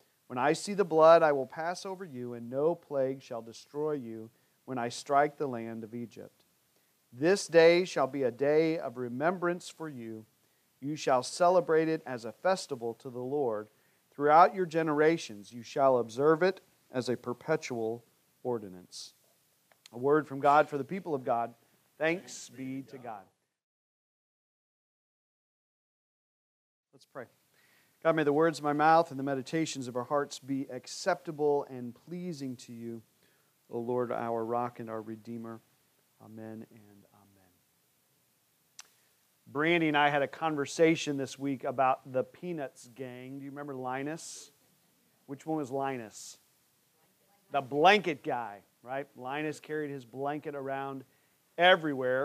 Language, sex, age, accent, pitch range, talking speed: English, male, 40-59, American, 125-155 Hz, 145 wpm